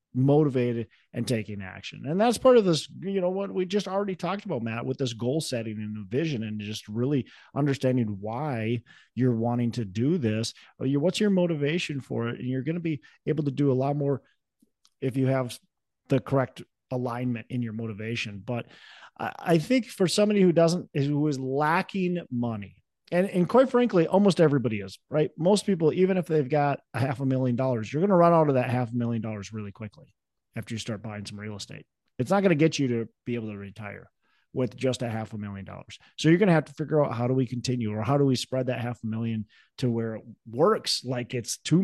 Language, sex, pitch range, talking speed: English, male, 115-155 Hz, 225 wpm